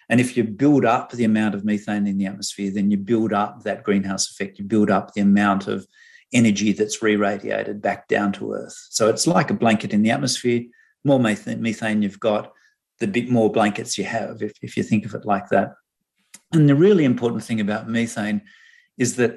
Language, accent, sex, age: English, Australian, male, 40-59